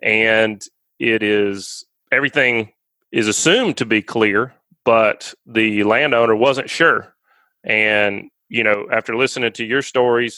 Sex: male